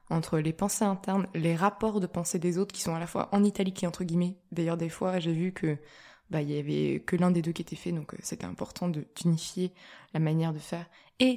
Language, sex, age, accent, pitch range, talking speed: French, female, 20-39, French, 165-185 Hz, 250 wpm